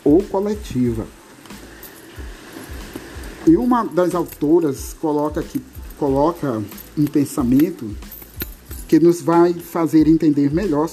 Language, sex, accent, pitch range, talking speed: Portuguese, male, Brazilian, 130-175 Hz, 95 wpm